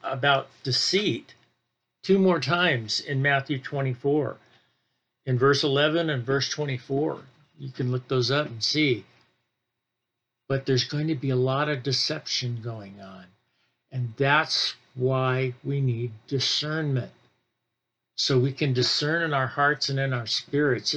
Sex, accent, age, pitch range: male, American, 50-69, 120-145 Hz